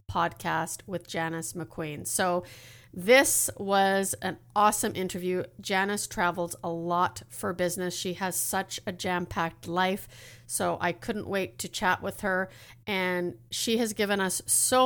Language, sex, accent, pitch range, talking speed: English, female, American, 170-190 Hz, 150 wpm